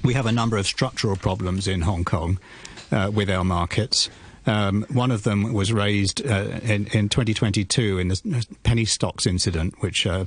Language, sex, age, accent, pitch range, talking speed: English, male, 40-59, British, 95-115 Hz, 180 wpm